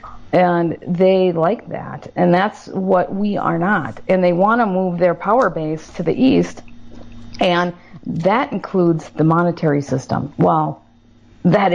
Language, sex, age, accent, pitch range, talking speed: English, female, 50-69, American, 155-195 Hz, 150 wpm